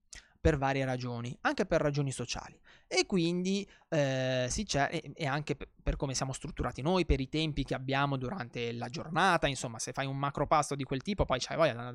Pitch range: 130-160 Hz